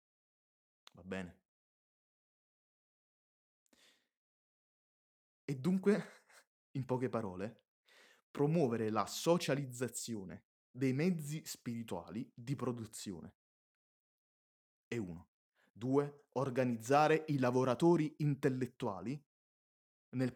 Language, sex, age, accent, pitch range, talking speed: Italian, male, 20-39, native, 110-150 Hz, 70 wpm